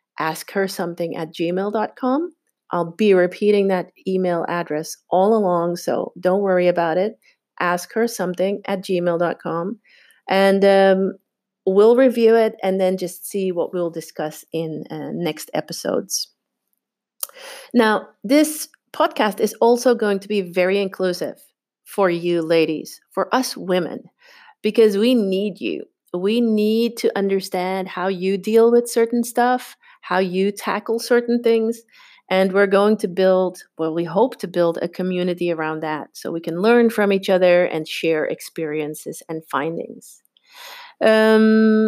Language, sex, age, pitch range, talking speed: English, female, 40-59, 180-230 Hz, 145 wpm